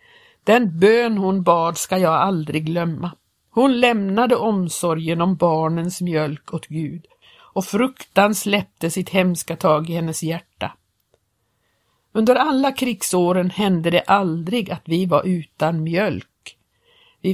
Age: 50-69